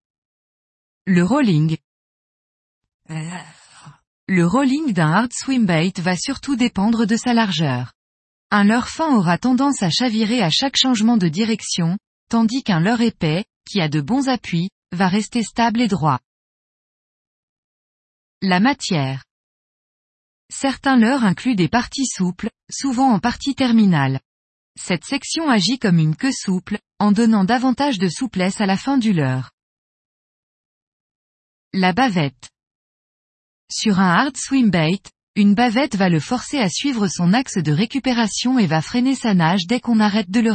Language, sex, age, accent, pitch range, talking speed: French, female, 20-39, French, 175-250 Hz, 140 wpm